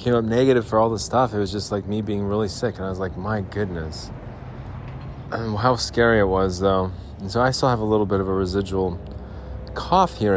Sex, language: male, English